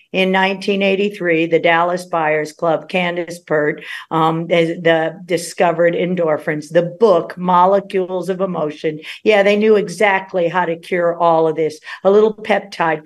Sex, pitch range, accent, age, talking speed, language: female, 160-185 Hz, American, 50-69, 140 wpm, English